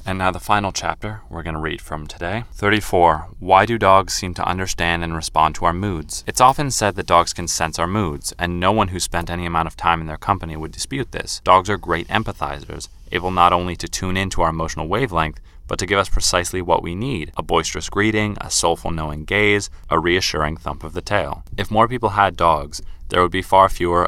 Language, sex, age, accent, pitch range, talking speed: English, male, 20-39, American, 80-95 Hz, 225 wpm